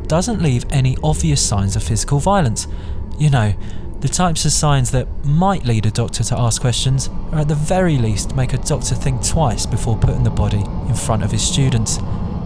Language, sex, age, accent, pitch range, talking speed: English, male, 20-39, British, 105-150 Hz, 195 wpm